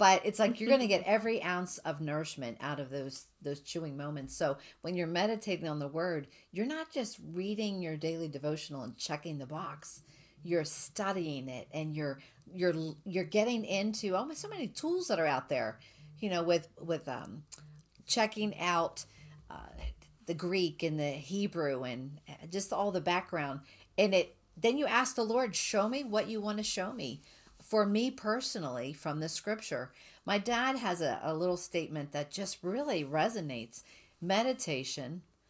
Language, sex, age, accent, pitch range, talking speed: English, female, 50-69, American, 150-210 Hz, 175 wpm